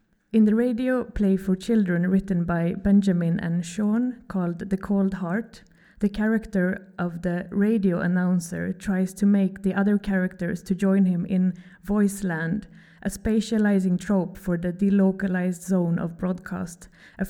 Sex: female